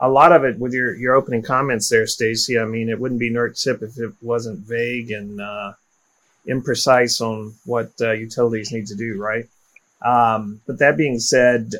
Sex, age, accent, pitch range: male, 30-49, American, 110-120 Hz